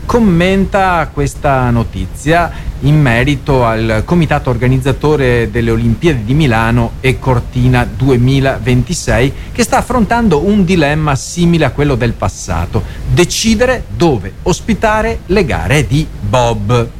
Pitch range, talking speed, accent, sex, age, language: 115-180 Hz, 115 wpm, native, male, 40-59, Italian